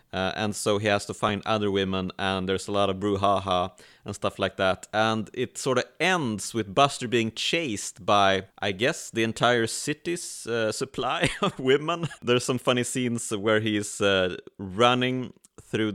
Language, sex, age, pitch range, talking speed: English, male, 30-49, 100-115 Hz, 175 wpm